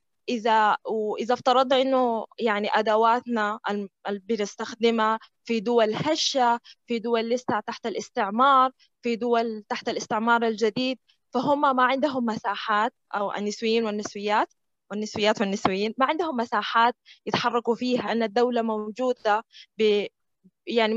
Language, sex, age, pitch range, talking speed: Arabic, female, 20-39, 215-250 Hz, 115 wpm